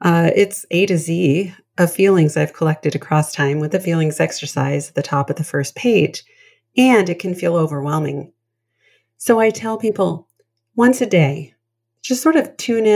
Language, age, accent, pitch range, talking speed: English, 30-49, American, 145-200 Hz, 175 wpm